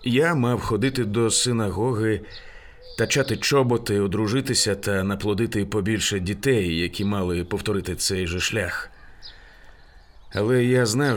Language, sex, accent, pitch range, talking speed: Ukrainian, male, native, 95-115 Hz, 115 wpm